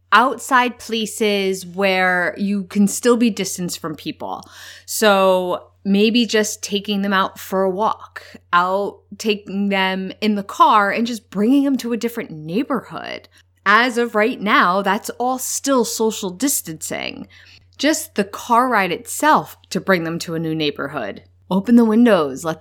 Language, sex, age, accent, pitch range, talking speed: English, female, 20-39, American, 155-225 Hz, 155 wpm